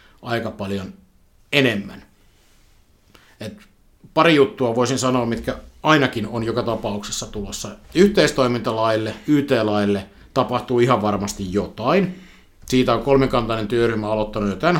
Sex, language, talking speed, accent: male, Finnish, 110 wpm, native